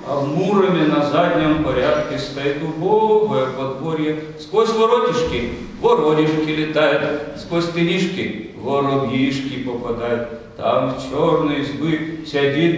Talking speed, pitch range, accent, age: 100 wpm, 150-185 Hz, native, 40-59